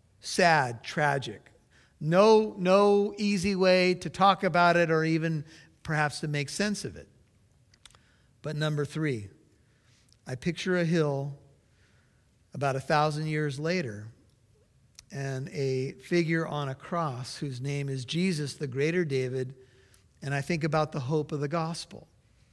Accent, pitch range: American, 130-170 Hz